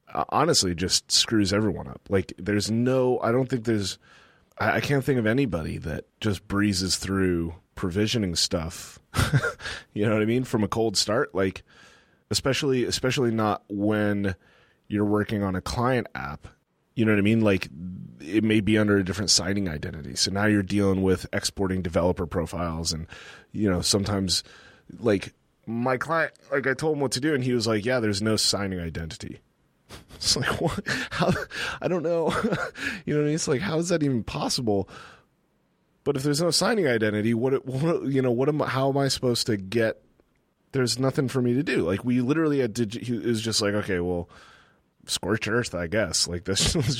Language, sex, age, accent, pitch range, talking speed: English, male, 30-49, American, 95-125 Hz, 195 wpm